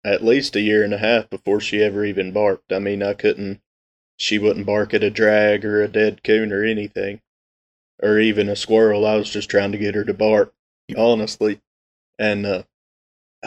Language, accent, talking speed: English, American, 195 wpm